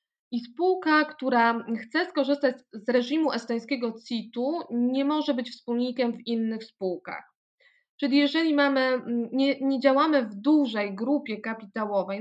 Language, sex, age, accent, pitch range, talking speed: Polish, female, 20-39, native, 230-280 Hz, 125 wpm